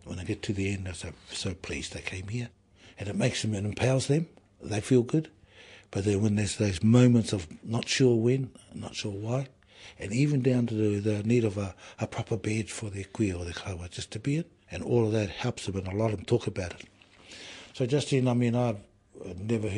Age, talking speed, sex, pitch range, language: 60-79, 240 wpm, male, 95-120 Hz, English